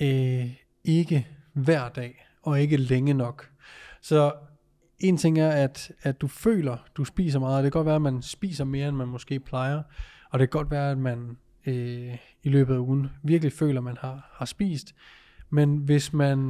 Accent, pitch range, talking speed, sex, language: native, 130-150 Hz, 195 wpm, male, Danish